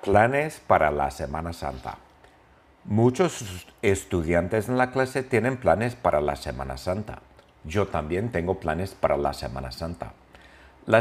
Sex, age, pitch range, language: male, 50-69, 85-110 Hz, English